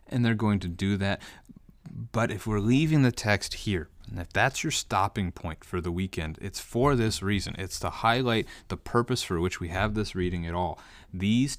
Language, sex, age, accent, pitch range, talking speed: English, male, 30-49, American, 90-115 Hz, 205 wpm